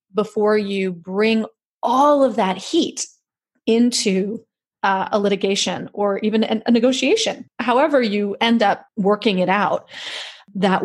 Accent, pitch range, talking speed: American, 195-235 Hz, 125 wpm